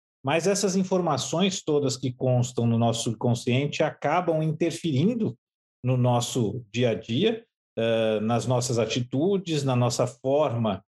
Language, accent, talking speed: Portuguese, Brazilian, 120 wpm